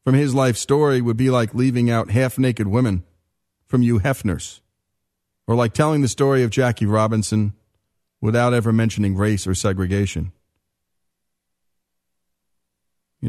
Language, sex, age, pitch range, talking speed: English, male, 40-59, 95-130 Hz, 130 wpm